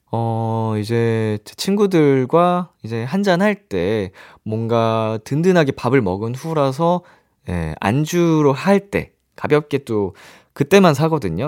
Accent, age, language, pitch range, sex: native, 20-39, Korean, 110-170 Hz, male